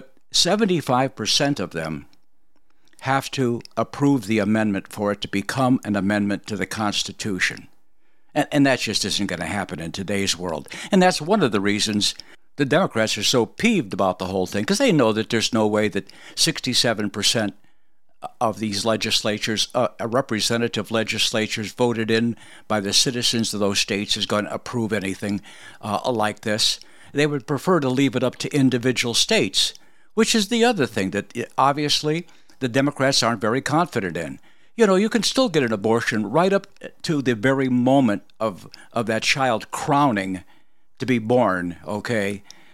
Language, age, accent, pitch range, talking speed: English, 60-79, American, 105-135 Hz, 170 wpm